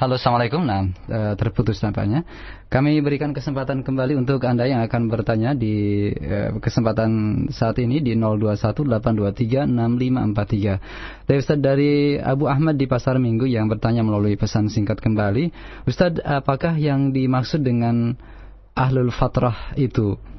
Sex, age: male, 20-39